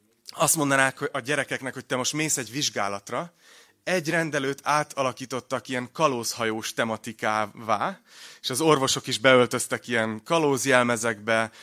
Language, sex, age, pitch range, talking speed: Hungarian, male, 30-49, 115-150 Hz, 120 wpm